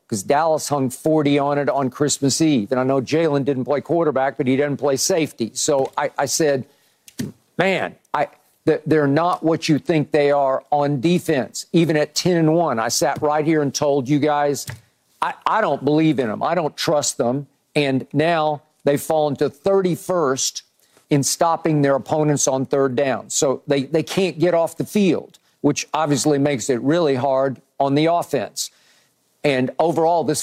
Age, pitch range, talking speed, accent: 50-69, 140-170 Hz, 180 wpm, American